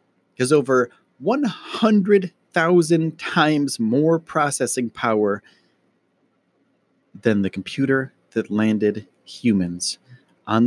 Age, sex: 30-49, male